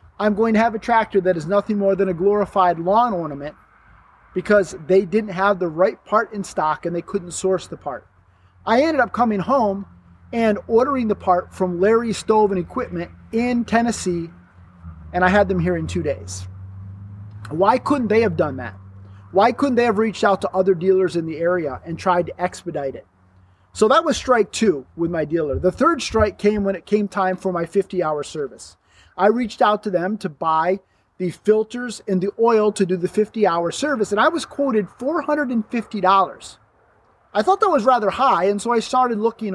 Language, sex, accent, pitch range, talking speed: English, male, American, 170-225 Hz, 200 wpm